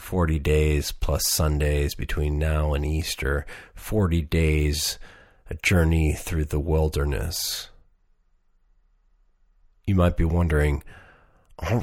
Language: English